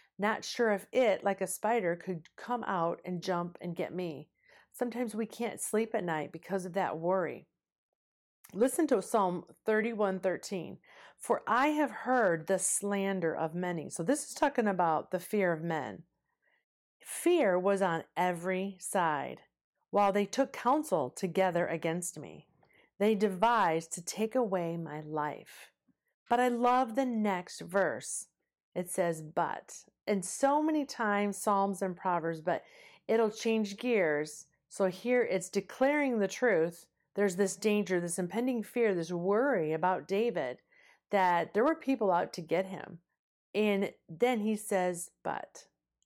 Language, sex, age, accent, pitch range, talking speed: English, female, 40-59, American, 175-235 Hz, 150 wpm